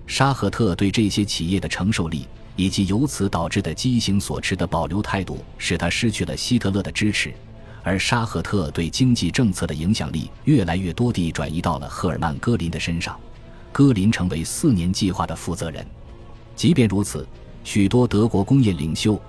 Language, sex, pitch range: Chinese, male, 85-115 Hz